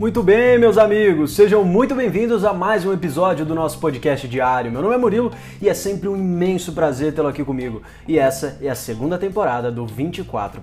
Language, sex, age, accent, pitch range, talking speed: Portuguese, male, 20-39, Brazilian, 120-175 Hz, 205 wpm